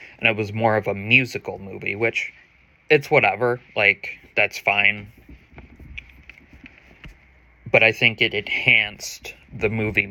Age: 20-39